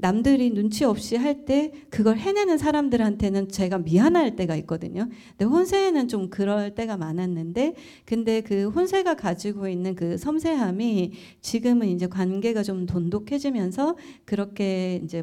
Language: Korean